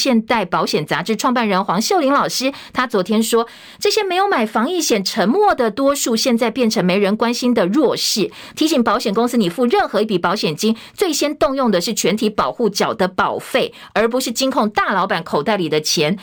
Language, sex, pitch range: Chinese, female, 205-270 Hz